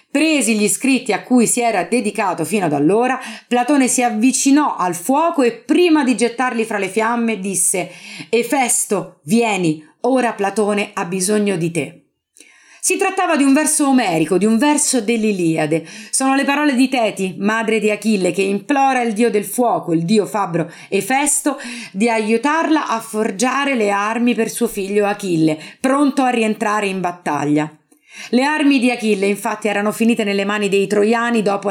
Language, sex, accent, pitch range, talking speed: Italian, female, native, 185-250 Hz, 165 wpm